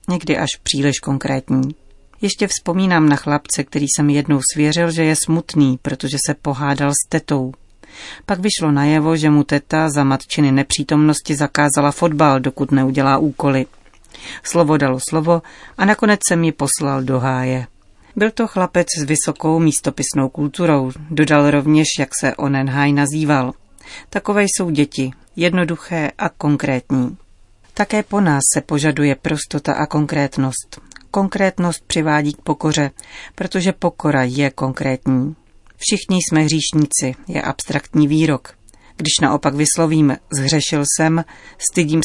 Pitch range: 140-165 Hz